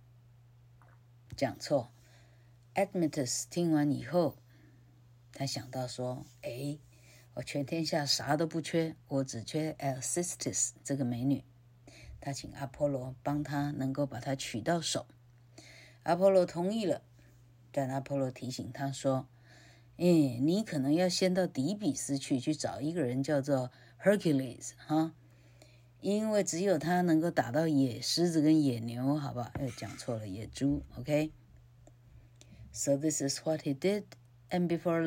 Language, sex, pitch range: Chinese, female, 120-155 Hz